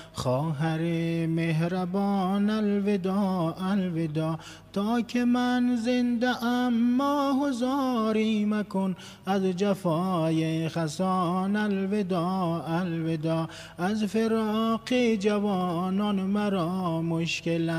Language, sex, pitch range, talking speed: English, male, 165-210 Hz, 70 wpm